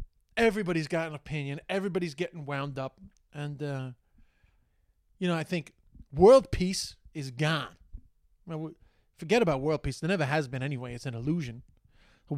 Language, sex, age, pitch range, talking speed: English, male, 30-49, 120-160 Hz, 150 wpm